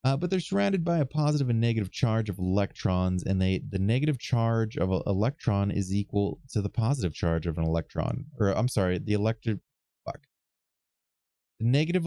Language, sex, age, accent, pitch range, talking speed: English, male, 30-49, American, 85-125 Hz, 180 wpm